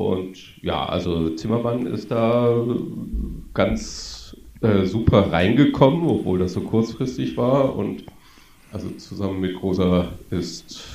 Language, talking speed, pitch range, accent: German, 115 wpm, 90-115 Hz, German